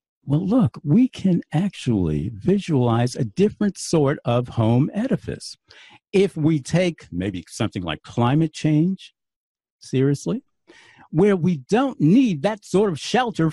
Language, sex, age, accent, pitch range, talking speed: English, male, 60-79, American, 125-190 Hz, 130 wpm